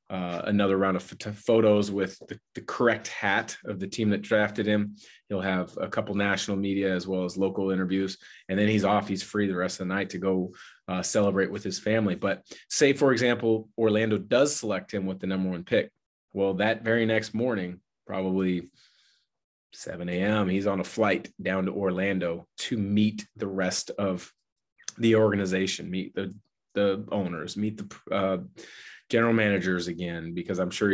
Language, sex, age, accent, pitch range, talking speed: English, male, 30-49, American, 95-105 Hz, 180 wpm